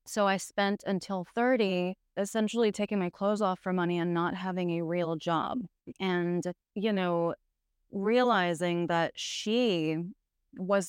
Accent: American